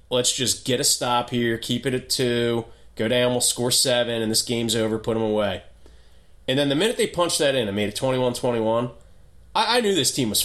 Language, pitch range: English, 115-160 Hz